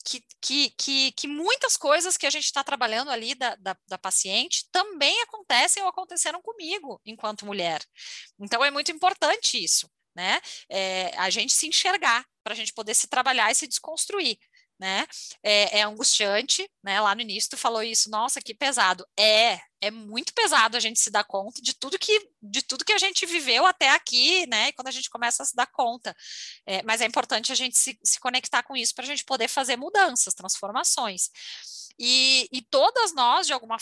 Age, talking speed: 20-39, 195 wpm